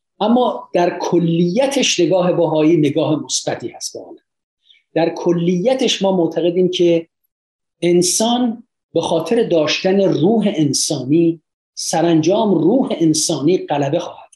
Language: Persian